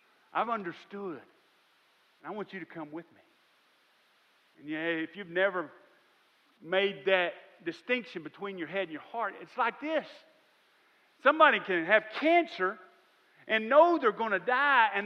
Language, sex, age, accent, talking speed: English, male, 40-59, American, 150 wpm